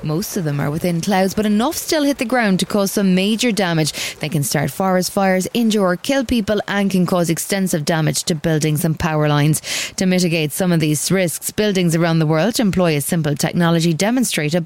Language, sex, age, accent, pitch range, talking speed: English, female, 30-49, Irish, 160-210 Hz, 210 wpm